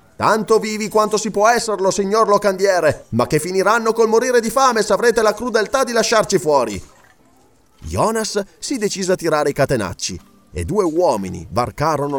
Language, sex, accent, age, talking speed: Italian, male, native, 30-49, 160 wpm